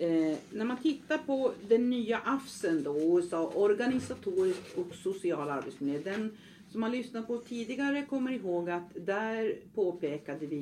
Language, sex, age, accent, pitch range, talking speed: Swedish, female, 50-69, native, 160-235 Hz, 130 wpm